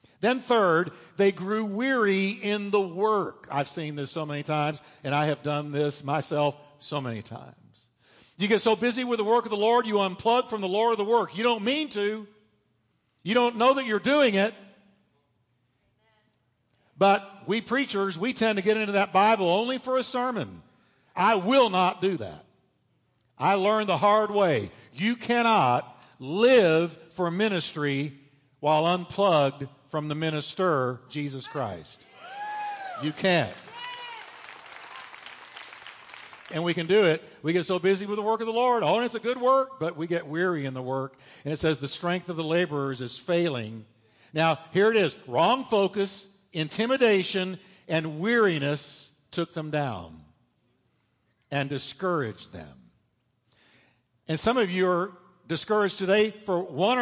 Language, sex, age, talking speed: English, male, 50-69, 160 wpm